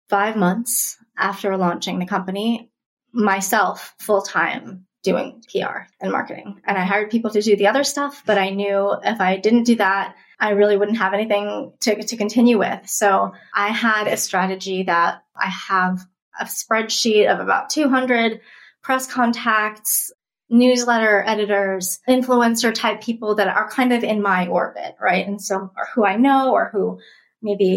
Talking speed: 160 wpm